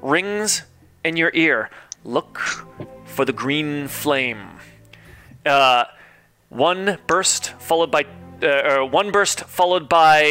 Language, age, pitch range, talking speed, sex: English, 30-49, 135-170 Hz, 115 wpm, male